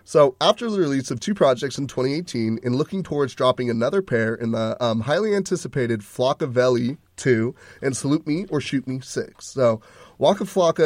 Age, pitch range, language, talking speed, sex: 30-49, 120-160 Hz, English, 180 wpm, male